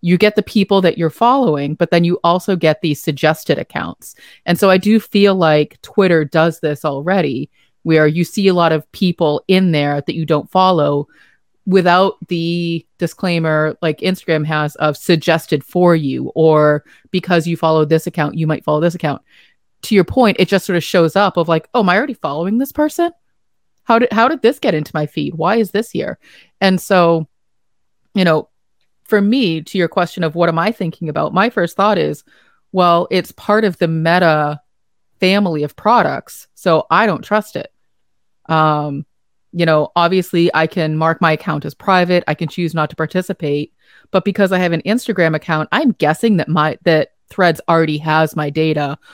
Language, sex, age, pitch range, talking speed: English, female, 30-49, 155-190 Hz, 190 wpm